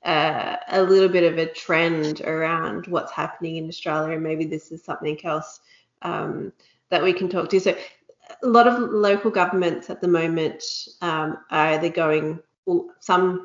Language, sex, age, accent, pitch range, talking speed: English, female, 30-49, Australian, 160-190 Hz, 170 wpm